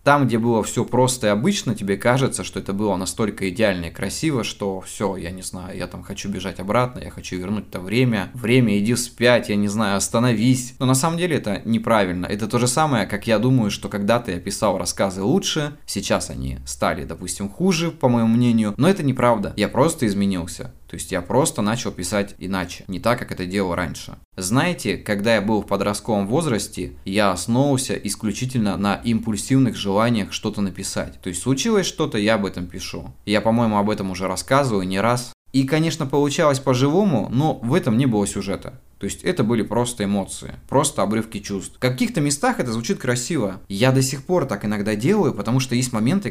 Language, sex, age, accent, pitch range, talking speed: Russian, male, 20-39, native, 100-130 Hz, 195 wpm